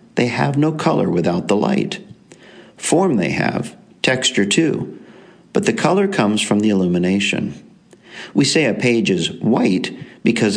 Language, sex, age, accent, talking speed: English, male, 50-69, American, 150 wpm